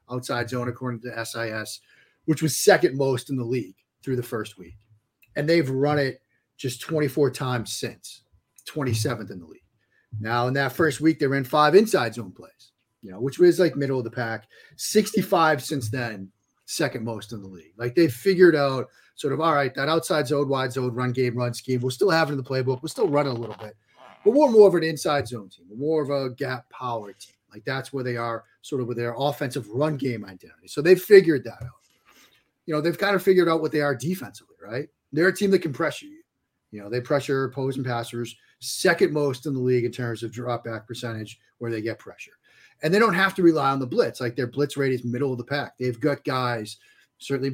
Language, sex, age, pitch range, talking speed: English, male, 40-59, 120-150 Hz, 230 wpm